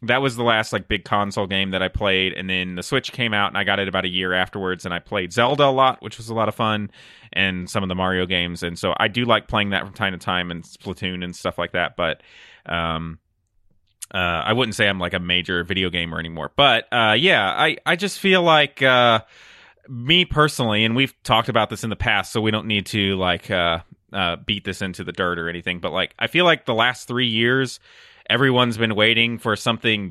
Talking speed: 240 wpm